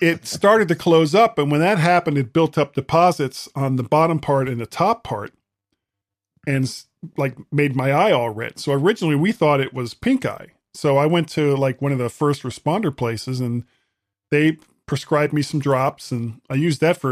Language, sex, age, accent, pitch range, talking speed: English, male, 40-59, American, 125-155 Hz, 205 wpm